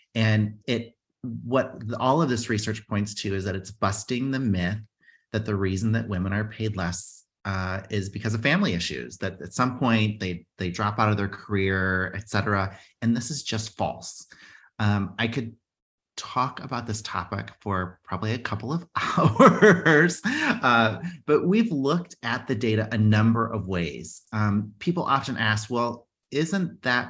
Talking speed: 170 wpm